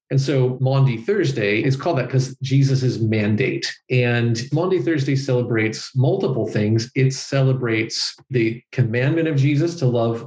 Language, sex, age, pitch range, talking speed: English, male, 40-59, 115-140 Hz, 140 wpm